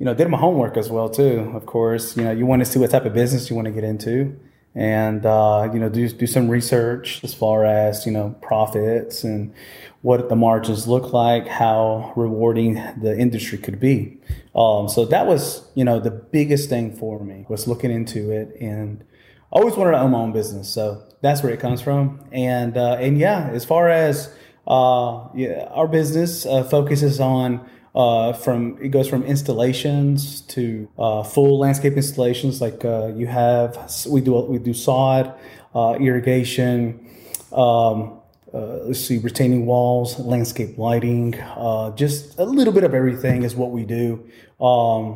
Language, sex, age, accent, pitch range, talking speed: English, male, 30-49, American, 115-135 Hz, 180 wpm